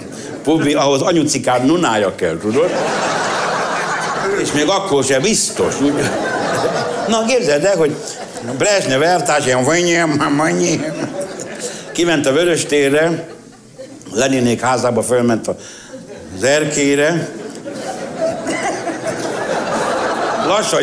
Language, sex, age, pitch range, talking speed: Hungarian, male, 70-89, 115-170 Hz, 85 wpm